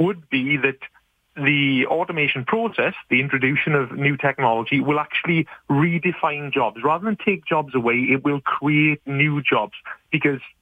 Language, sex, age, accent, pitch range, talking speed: English, male, 30-49, British, 130-160 Hz, 145 wpm